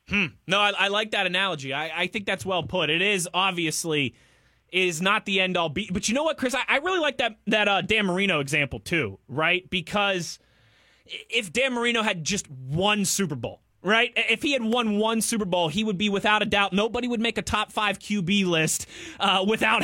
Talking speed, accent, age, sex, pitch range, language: 220 wpm, American, 20-39, male, 160-210 Hz, English